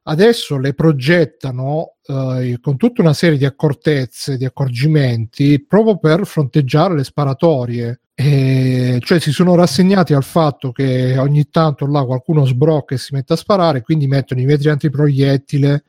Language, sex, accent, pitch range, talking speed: Italian, male, native, 135-155 Hz, 150 wpm